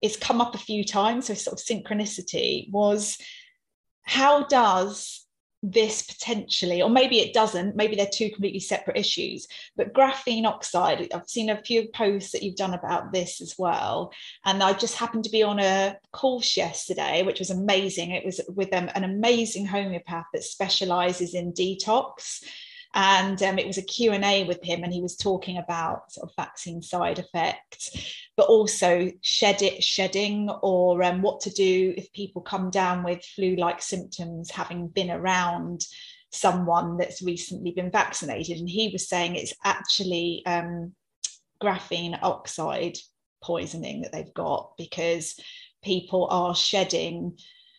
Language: English